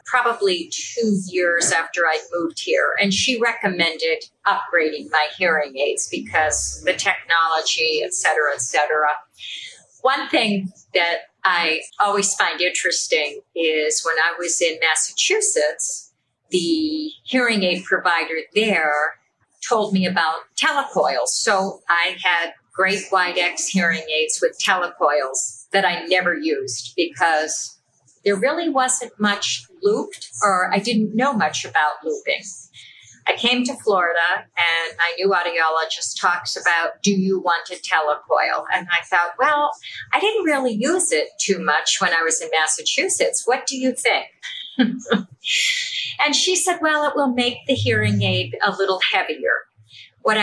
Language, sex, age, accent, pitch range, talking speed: English, female, 50-69, American, 170-275 Hz, 140 wpm